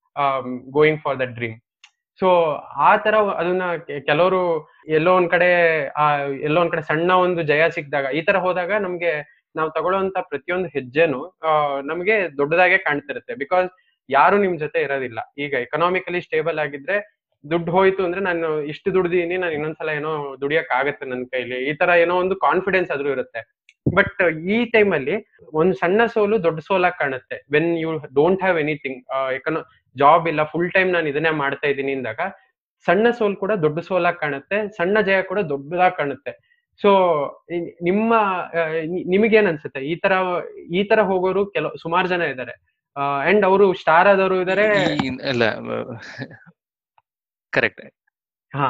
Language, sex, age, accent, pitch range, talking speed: Kannada, male, 20-39, native, 150-190 Hz, 130 wpm